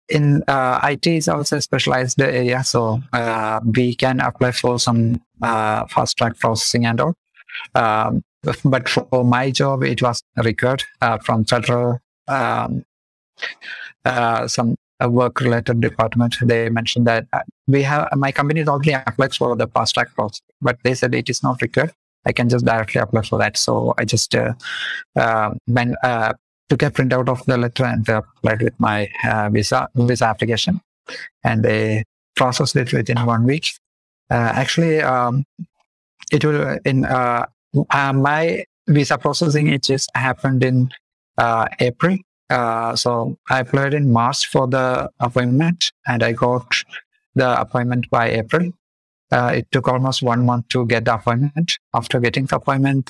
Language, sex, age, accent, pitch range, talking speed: English, male, 50-69, Indian, 115-135 Hz, 160 wpm